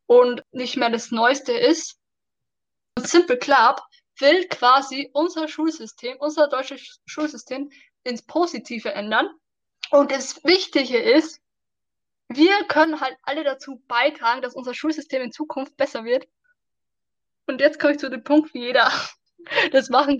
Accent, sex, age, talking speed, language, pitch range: German, female, 10-29, 135 wpm, German, 245-300 Hz